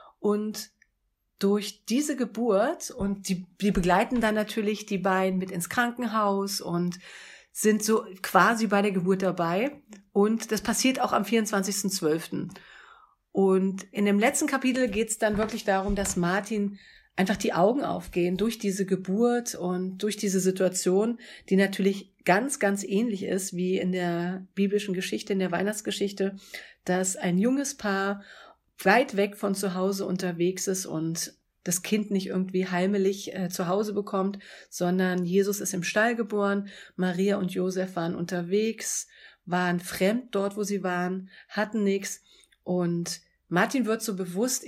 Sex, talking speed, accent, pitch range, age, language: female, 150 wpm, German, 185-210 Hz, 40-59, German